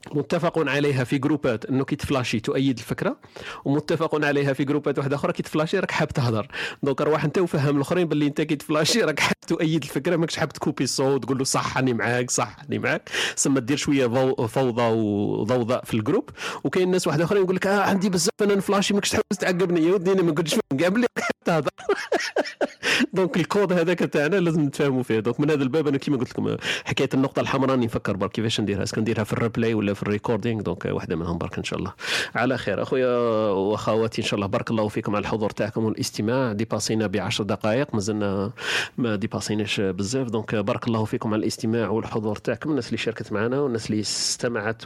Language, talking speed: Arabic, 195 wpm